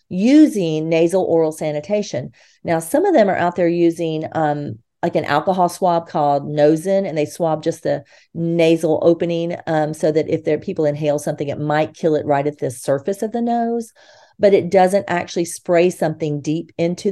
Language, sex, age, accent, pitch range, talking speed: English, female, 40-59, American, 160-200 Hz, 185 wpm